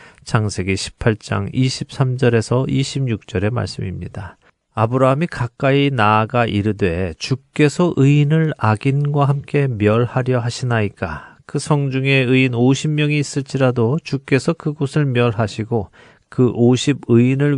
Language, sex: Korean, male